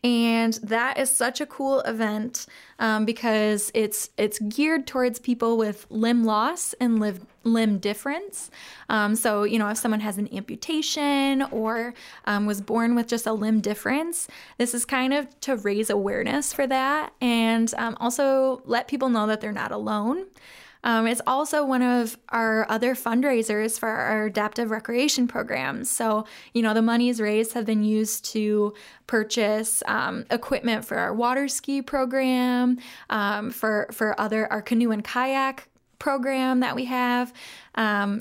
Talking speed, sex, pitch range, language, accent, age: 160 wpm, female, 215-255 Hz, English, American, 10-29